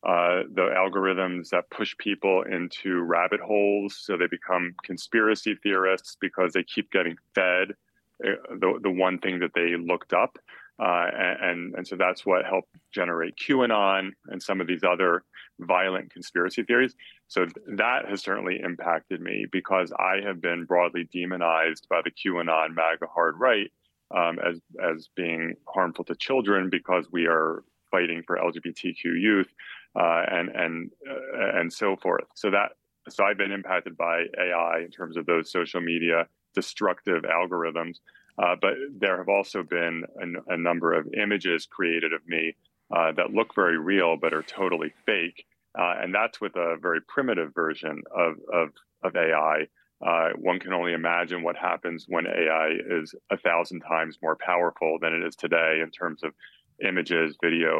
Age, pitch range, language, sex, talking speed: 30-49, 85-95 Hz, English, male, 165 wpm